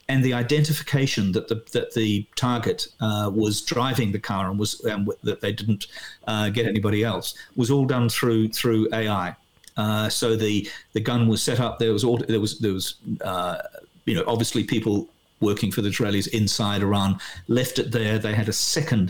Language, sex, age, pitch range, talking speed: English, male, 50-69, 105-125 Hz, 200 wpm